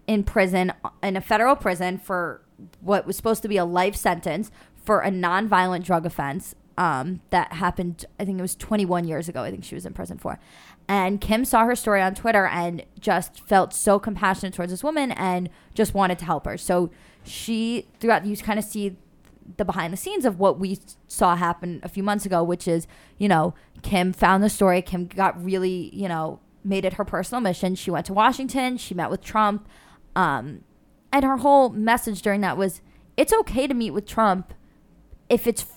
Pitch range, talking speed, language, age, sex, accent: 180-215 Hz, 200 wpm, English, 20-39, female, American